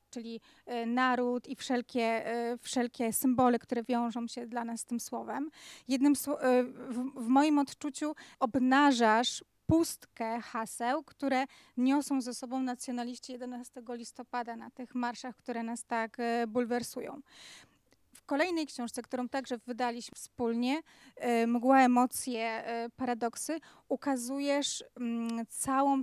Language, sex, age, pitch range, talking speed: English, female, 30-49, 240-265 Hz, 105 wpm